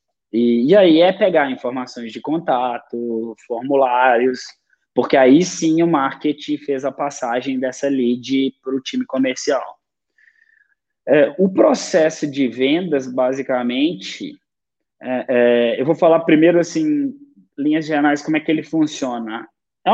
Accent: Brazilian